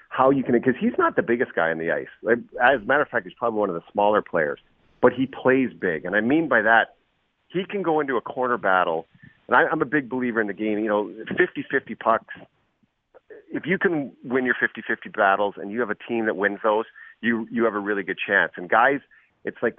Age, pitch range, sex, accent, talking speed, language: 40-59, 100-130 Hz, male, American, 235 wpm, English